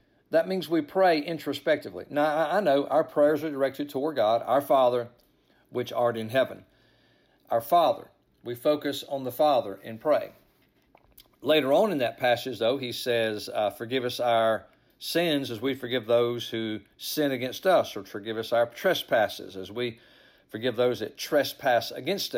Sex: male